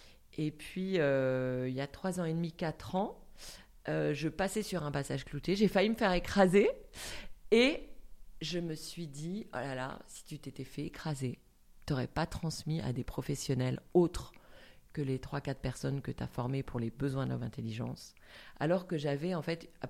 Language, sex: French, female